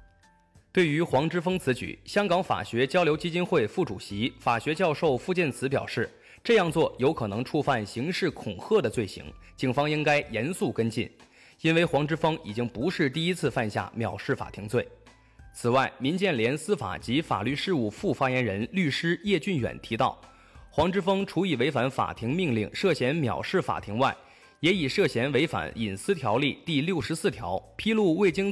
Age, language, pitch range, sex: 20-39, Chinese, 110-175 Hz, male